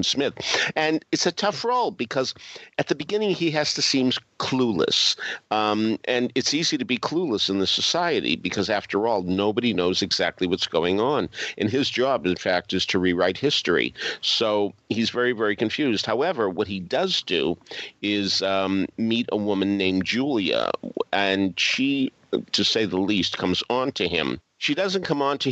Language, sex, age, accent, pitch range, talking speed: English, male, 50-69, American, 95-125 Hz, 175 wpm